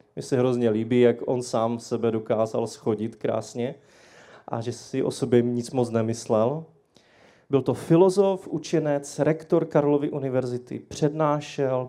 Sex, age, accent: male, 30-49, native